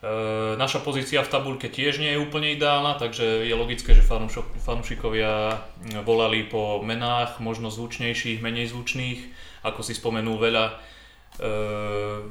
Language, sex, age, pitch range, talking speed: Slovak, male, 20-39, 115-135 Hz, 130 wpm